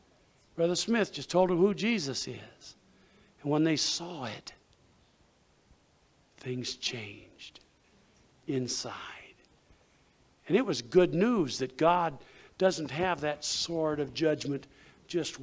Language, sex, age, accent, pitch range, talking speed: English, male, 60-79, American, 140-205 Hz, 115 wpm